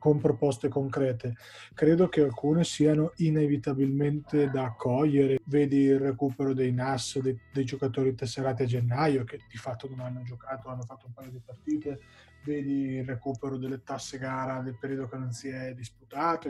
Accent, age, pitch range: native, 20-39, 130-145 Hz